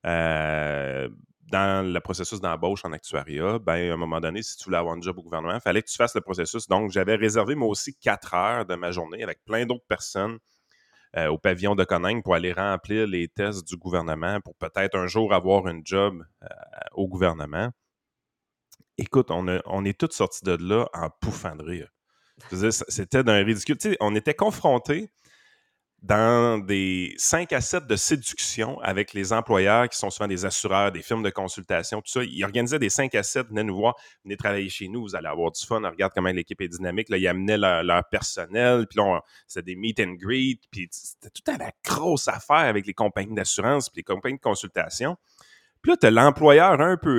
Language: French